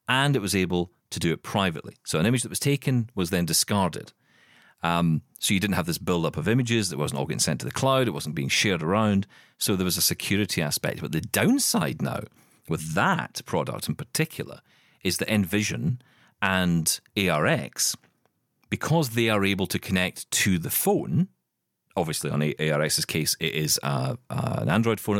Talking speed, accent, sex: 190 wpm, British, male